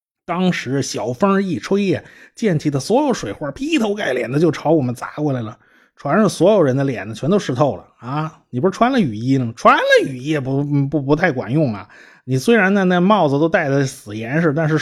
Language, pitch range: Chinese, 125-175 Hz